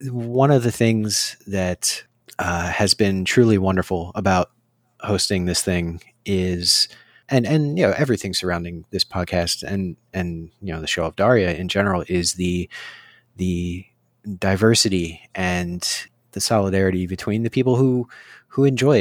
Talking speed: 145 wpm